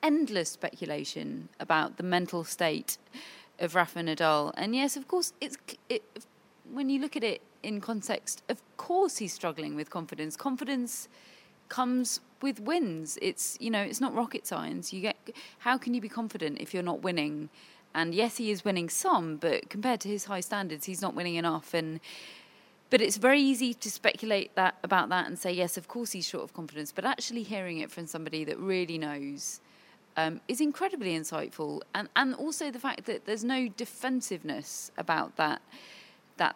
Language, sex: English, female